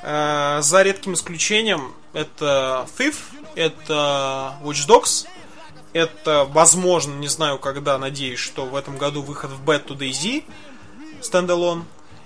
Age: 20-39